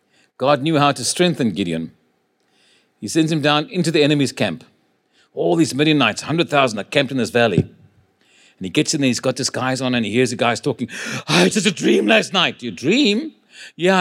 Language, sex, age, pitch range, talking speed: English, male, 50-69, 135-190 Hz, 210 wpm